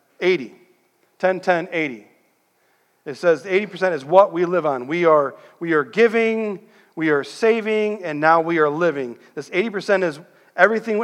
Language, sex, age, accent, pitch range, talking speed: English, male, 40-59, American, 145-190 Hz, 150 wpm